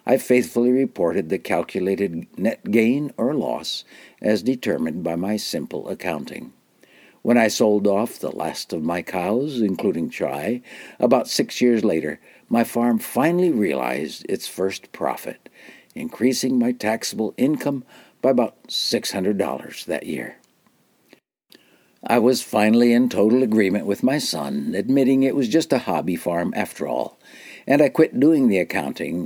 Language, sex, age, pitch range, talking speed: English, male, 60-79, 100-135 Hz, 145 wpm